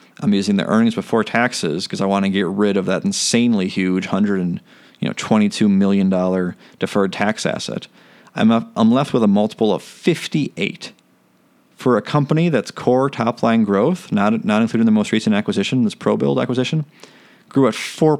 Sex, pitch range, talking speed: male, 105-170 Hz, 190 wpm